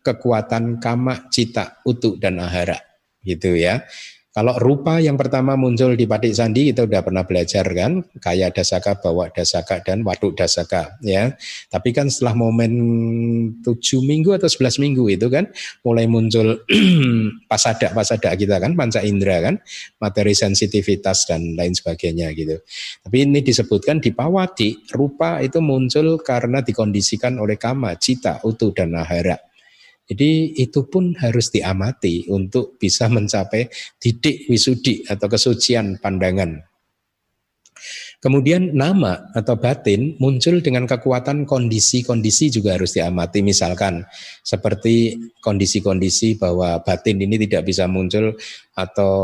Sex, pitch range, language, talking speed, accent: male, 95-125 Hz, Indonesian, 130 wpm, native